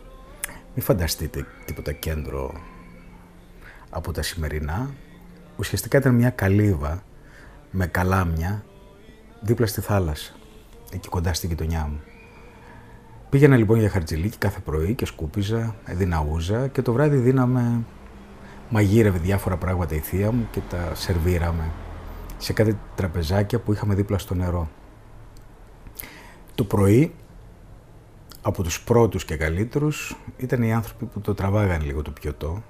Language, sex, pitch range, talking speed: Greek, male, 85-115 Hz, 125 wpm